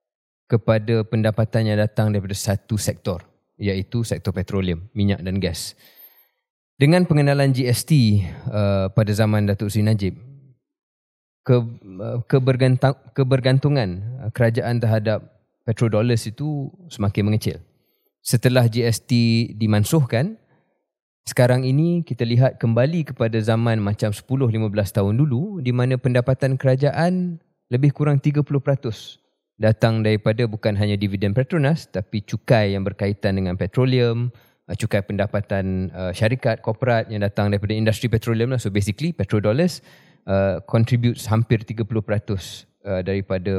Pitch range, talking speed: 105-130 Hz, 115 wpm